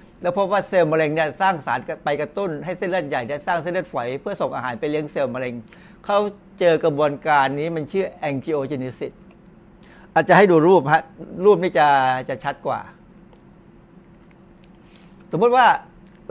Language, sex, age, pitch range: Thai, male, 60-79, 150-190 Hz